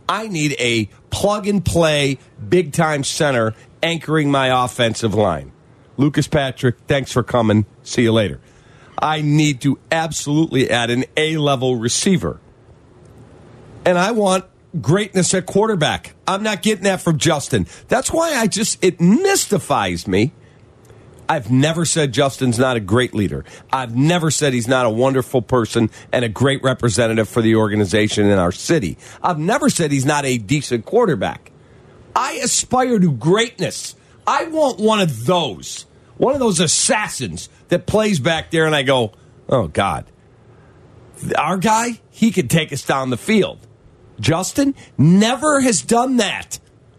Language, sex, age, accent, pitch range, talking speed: English, male, 50-69, American, 120-180 Hz, 150 wpm